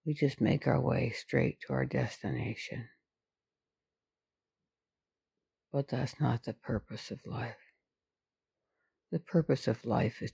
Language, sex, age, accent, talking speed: English, female, 60-79, American, 120 wpm